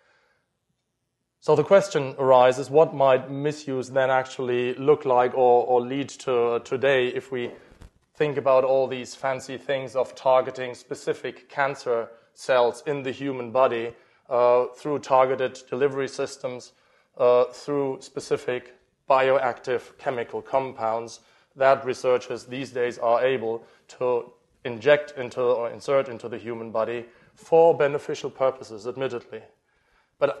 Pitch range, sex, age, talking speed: 120-140 Hz, male, 30-49, 125 wpm